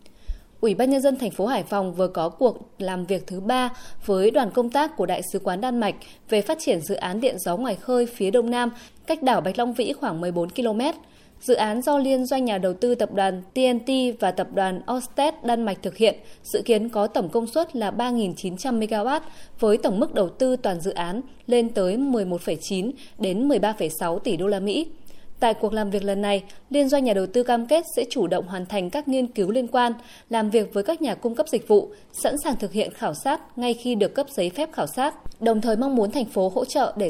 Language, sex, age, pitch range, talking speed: Vietnamese, female, 20-39, 200-260 Hz, 235 wpm